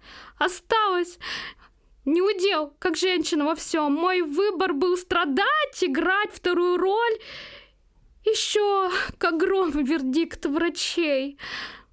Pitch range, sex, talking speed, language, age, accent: 210-320 Hz, female, 90 wpm, Russian, 20-39, native